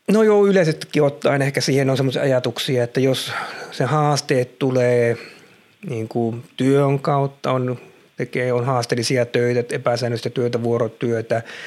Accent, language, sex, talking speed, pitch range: native, Finnish, male, 130 wpm, 115-135 Hz